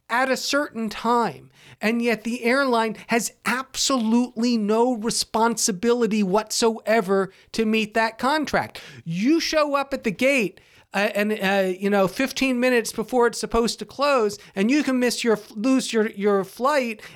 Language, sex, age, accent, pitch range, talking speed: English, male, 40-59, American, 195-245 Hz, 155 wpm